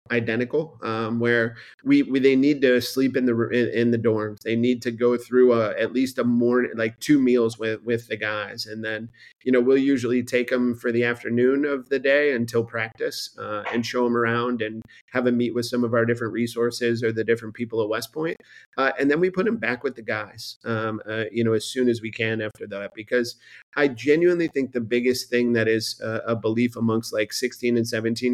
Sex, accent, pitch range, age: male, American, 115-125 Hz, 30-49